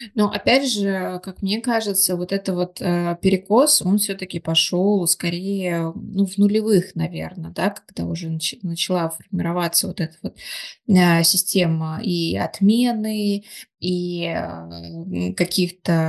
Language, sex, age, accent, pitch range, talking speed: Russian, female, 20-39, native, 175-205 Hz, 115 wpm